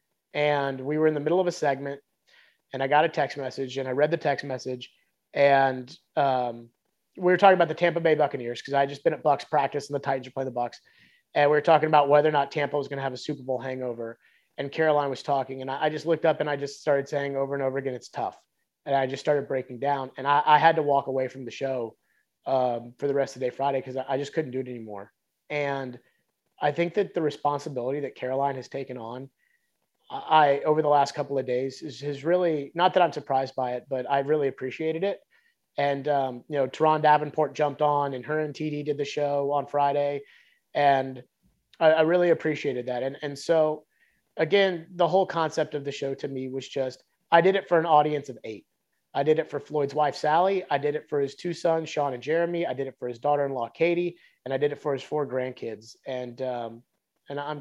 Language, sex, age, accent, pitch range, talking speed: English, male, 30-49, American, 135-155 Hz, 235 wpm